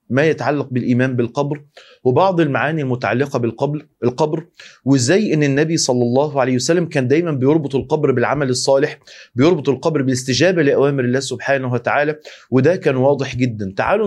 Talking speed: 145 wpm